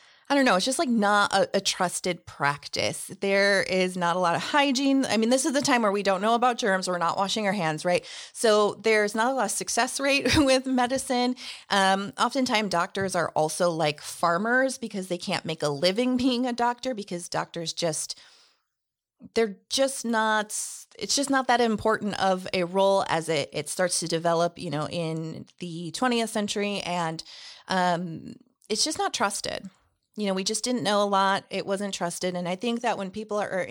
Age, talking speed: 30-49, 200 wpm